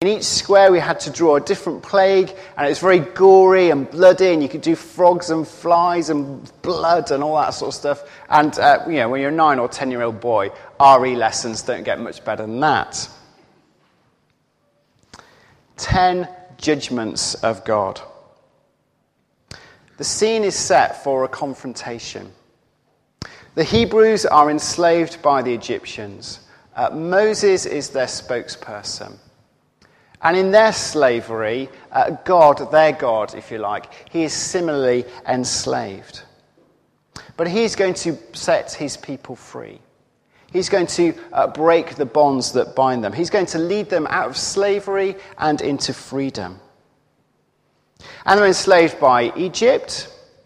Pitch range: 135-185 Hz